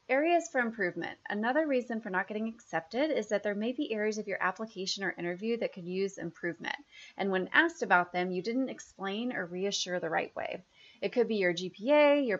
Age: 30-49